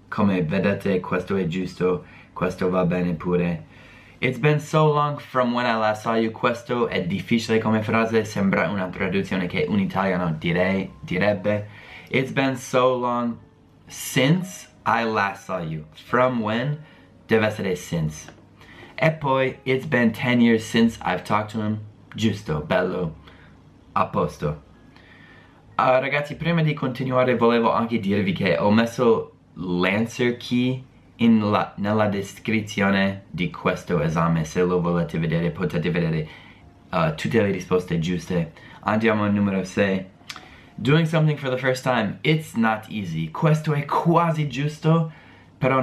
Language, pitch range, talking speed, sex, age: Italian, 95-130 Hz, 145 wpm, male, 20-39